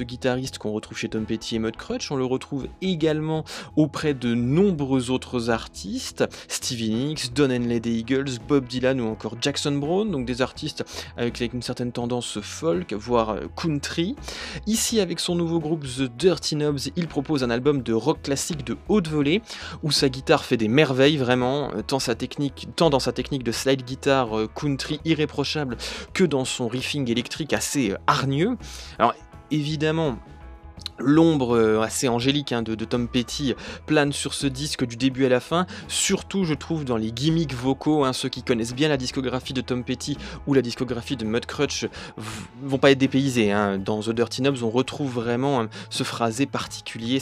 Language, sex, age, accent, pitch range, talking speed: French, male, 20-39, French, 115-145 Hz, 180 wpm